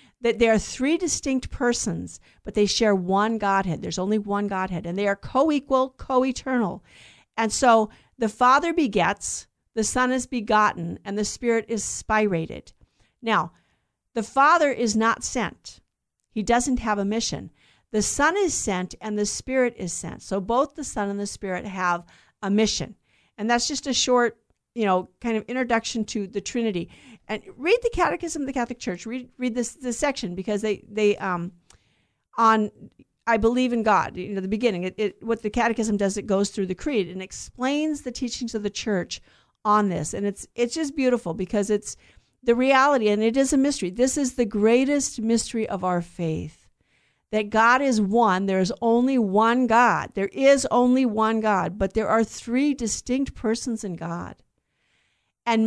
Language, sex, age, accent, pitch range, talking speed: English, female, 50-69, American, 200-250 Hz, 180 wpm